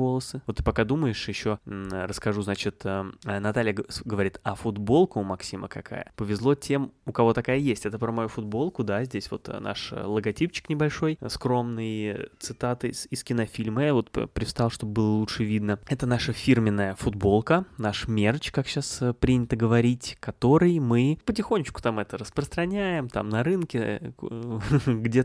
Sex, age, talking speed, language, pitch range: male, 20-39, 155 wpm, Russian, 105-130 Hz